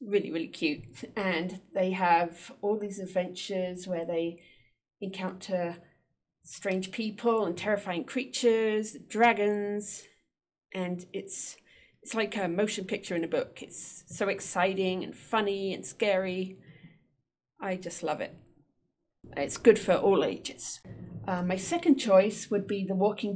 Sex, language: female, English